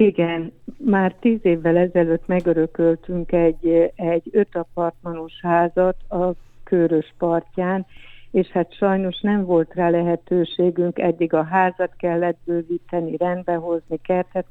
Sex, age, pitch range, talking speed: female, 60-79, 165-180 Hz, 115 wpm